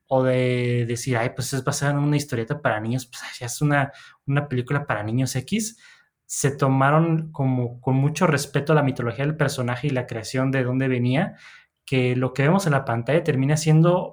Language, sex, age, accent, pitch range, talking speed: Spanish, male, 20-39, Mexican, 130-155 Hz, 200 wpm